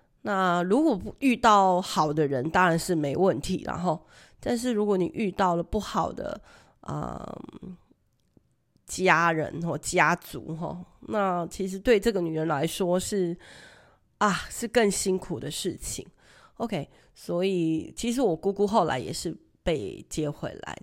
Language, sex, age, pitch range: Chinese, female, 30-49, 160-215 Hz